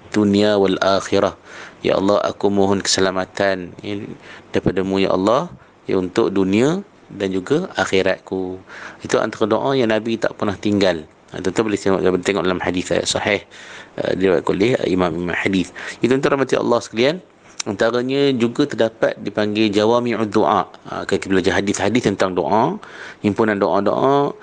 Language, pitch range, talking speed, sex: Malay, 95-120 Hz, 145 wpm, male